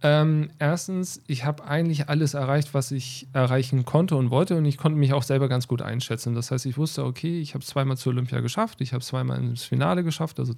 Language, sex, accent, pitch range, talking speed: German, male, German, 125-145 Hz, 225 wpm